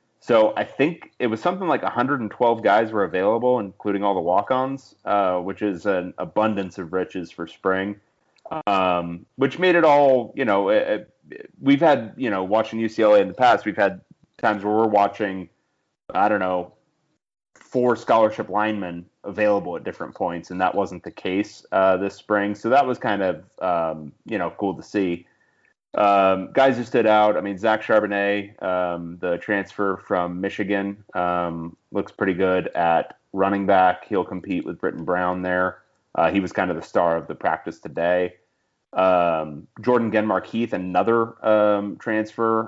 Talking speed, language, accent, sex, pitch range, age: 165 wpm, English, American, male, 90-110 Hz, 30-49